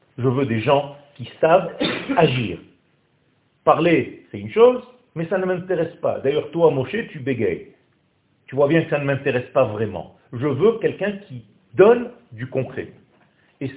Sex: male